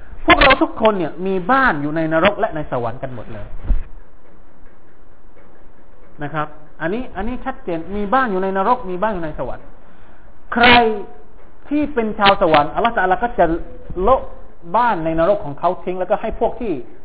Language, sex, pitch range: Thai, male, 135-185 Hz